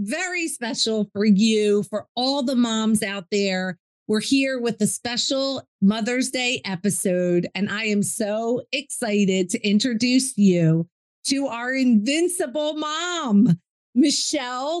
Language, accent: English, American